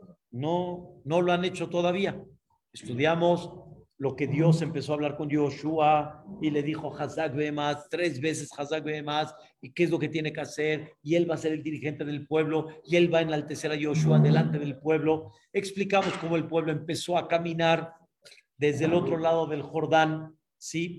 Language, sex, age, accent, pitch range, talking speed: Spanish, male, 50-69, Mexican, 150-175 Hz, 185 wpm